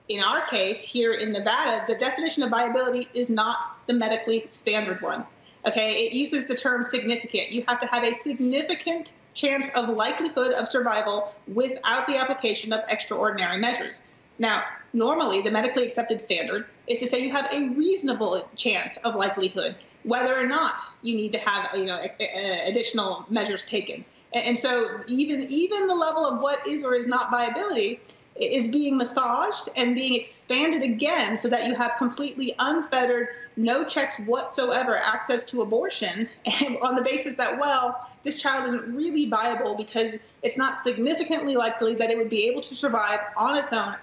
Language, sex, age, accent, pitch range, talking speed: English, female, 30-49, American, 225-265 Hz, 170 wpm